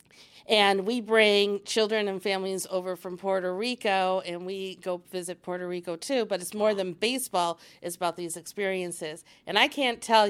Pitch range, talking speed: 175-195 Hz, 175 wpm